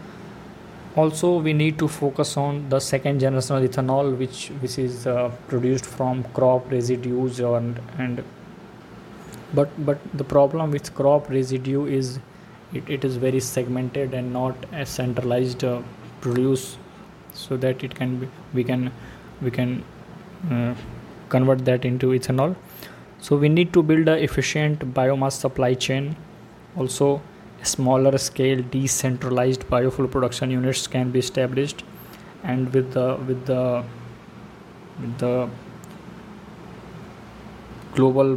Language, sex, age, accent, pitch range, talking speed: Hindi, male, 20-39, native, 125-140 Hz, 125 wpm